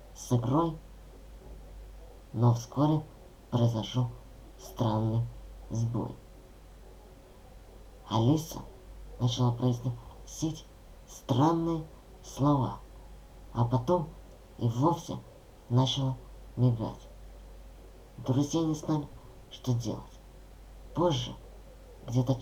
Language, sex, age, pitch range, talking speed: Russian, male, 50-69, 110-135 Hz, 65 wpm